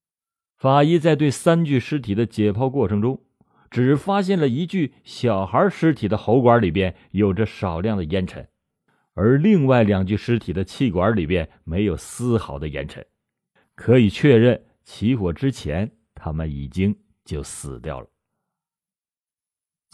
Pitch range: 95-140 Hz